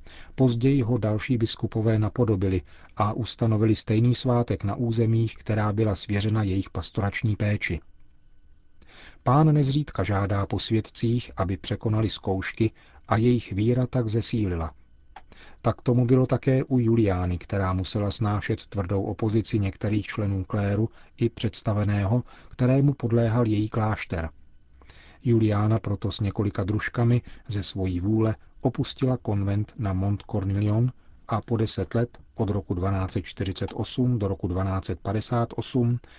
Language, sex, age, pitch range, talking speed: Czech, male, 40-59, 100-120 Hz, 120 wpm